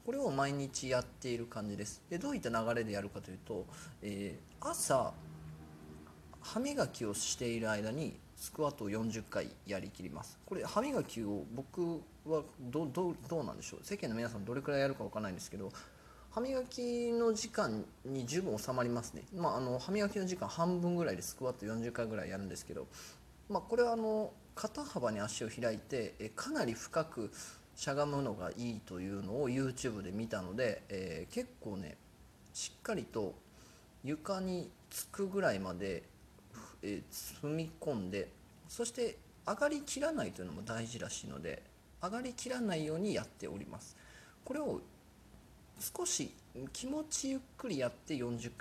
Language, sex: Japanese, male